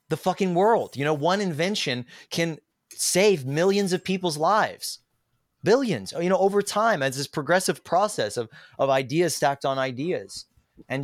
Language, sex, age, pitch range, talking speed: English, male, 30-49, 120-160 Hz, 160 wpm